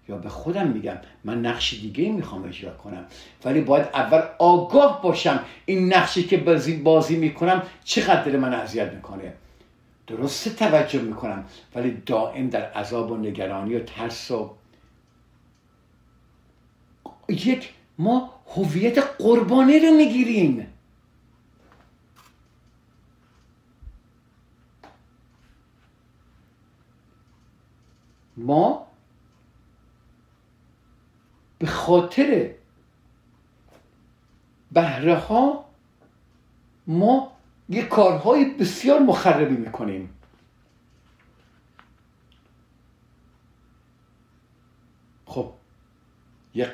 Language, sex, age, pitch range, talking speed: Persian, male, 60-79, 110-185 Hz, 70 wpm